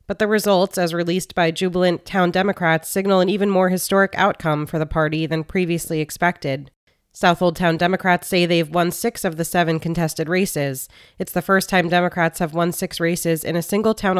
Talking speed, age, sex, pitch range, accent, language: 195 wpm, 20-39, female, 165-195 Hz, American, English